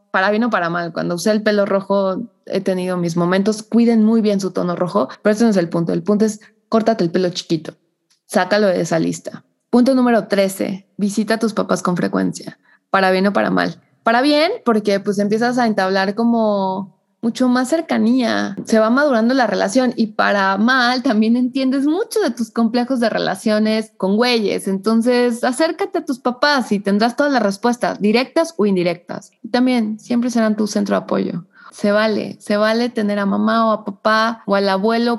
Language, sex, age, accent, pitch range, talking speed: Spanish, female, 20-39, Mexican, 190-235 Hz, 195 wpm